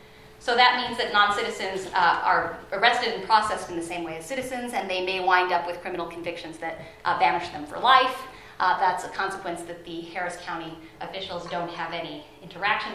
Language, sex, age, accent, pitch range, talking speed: English, female, 30-49, American, 170-205 Hz, 200 wpm